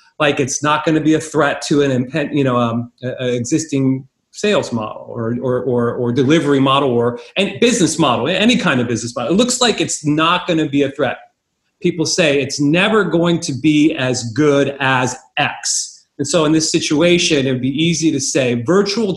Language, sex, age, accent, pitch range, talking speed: English, male, 30-49, American, 130-165 Hz, 190 wpm